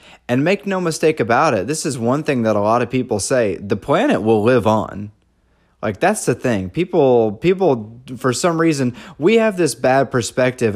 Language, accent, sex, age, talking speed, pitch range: English, American, male, 30-49, 195 wpm, 110-145 Hz